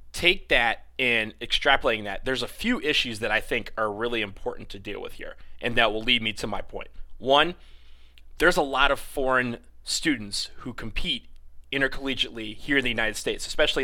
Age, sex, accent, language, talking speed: 30-49, male, American, English, 185 wpm